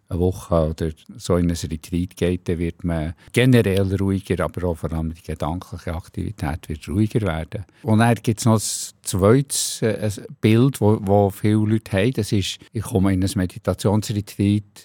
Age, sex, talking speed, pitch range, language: 50-69, male, 170 wpm, 90-110 Hz, German